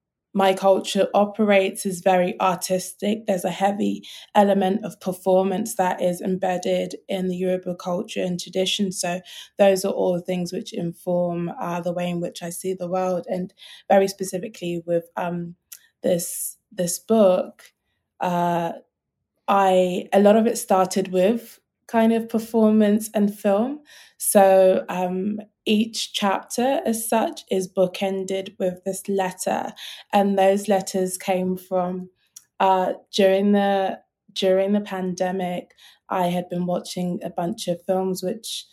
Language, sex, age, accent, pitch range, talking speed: English, female, 20-39, British, 180-200 Hz, 140 wpm